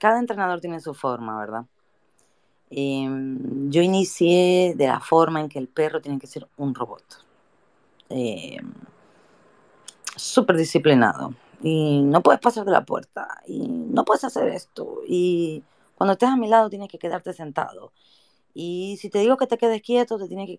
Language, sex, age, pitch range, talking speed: Spanish, female, 30-49, 140-190 Hz, 165 wpm